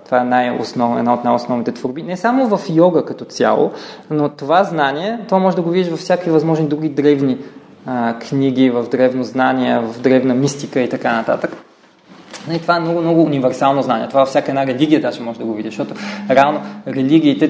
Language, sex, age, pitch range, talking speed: Bulgarian, male, 20-39, 125-160 Hz, 200 wpm